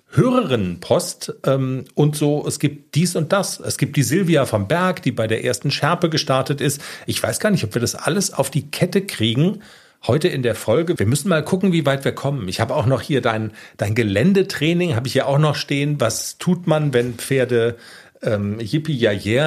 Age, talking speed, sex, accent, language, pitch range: 40-59, 215 wpm, male, German, German, 115-165 Hz